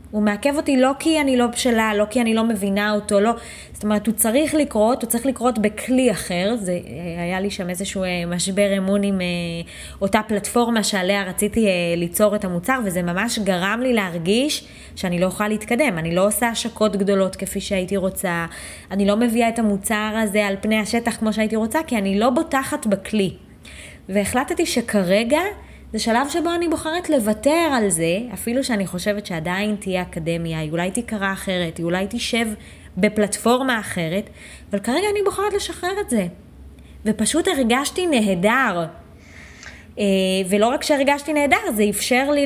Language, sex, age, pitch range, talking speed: Hebrew, female, 20-39, 195-245 Hz, 165 wpm